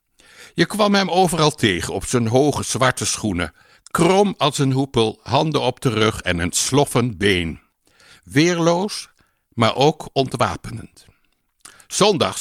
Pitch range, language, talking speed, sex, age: 105-155 Hz, Dutch, 130 wpm, male, 60-79